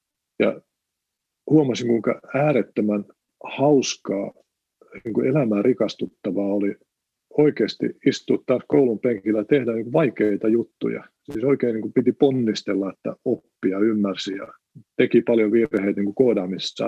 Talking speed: 115 wpm